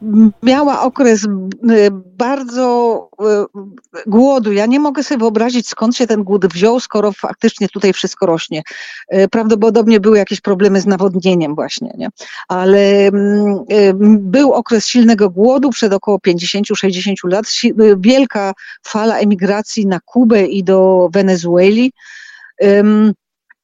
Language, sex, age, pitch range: Polish, female, 40-59, 200-245 Hz